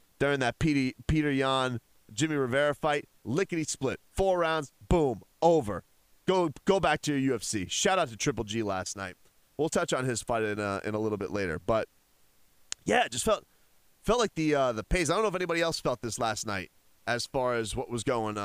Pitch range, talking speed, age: 105-150 Hz, 215 wpm, 30-49